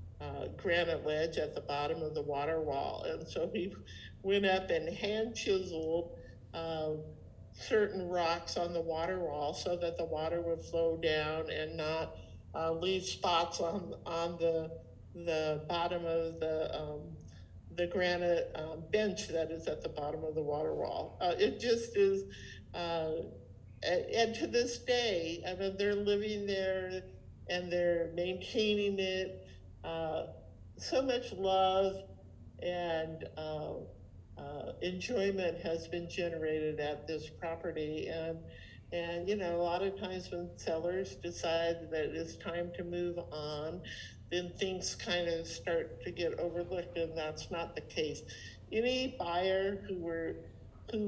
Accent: American